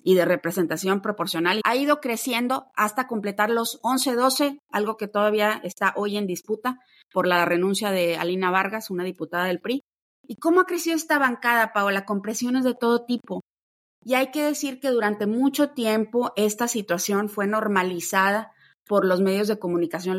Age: 30-49